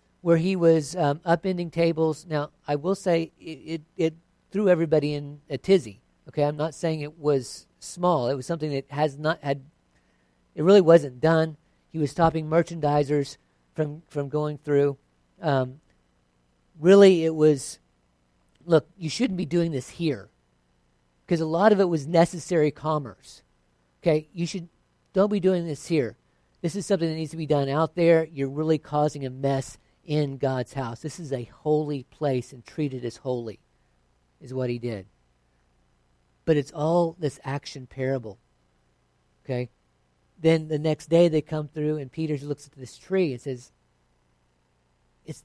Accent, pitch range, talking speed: American, 95-165 Hz, 165 wpm